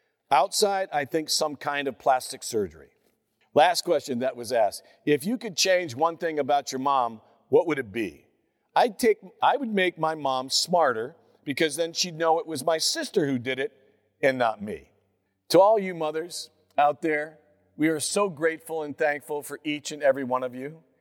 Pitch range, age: 125-165 Hz, 50-69